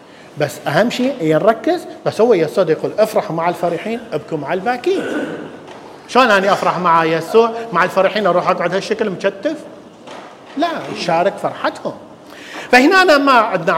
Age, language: 50-69, English